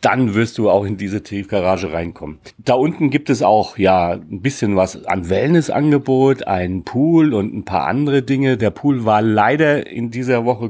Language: German